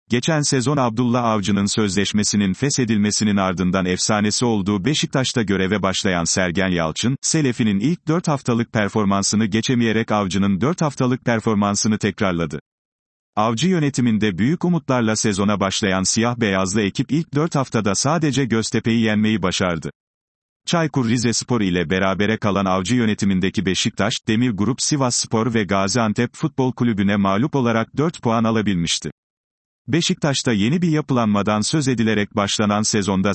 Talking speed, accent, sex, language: 125 wpm, native, male, Turkish